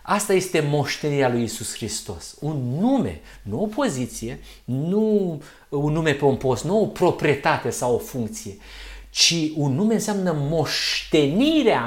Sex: male